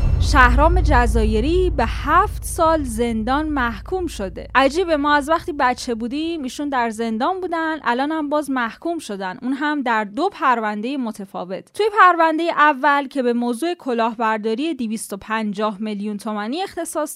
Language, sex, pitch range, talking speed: Persian, female, 220-305 Hz, 140 wpm